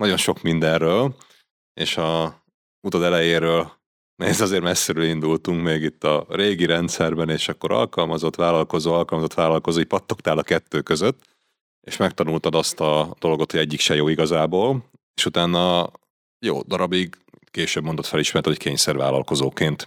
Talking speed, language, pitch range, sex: 135 wpm, Hungarian, 75-85 Hz, male